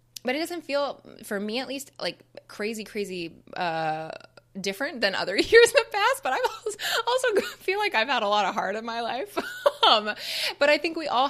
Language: English